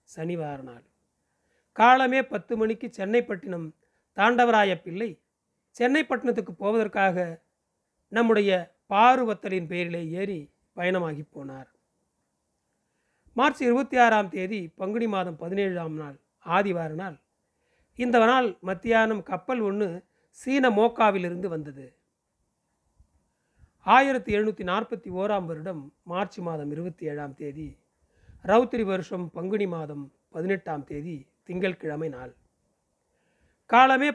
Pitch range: 165-230 Hz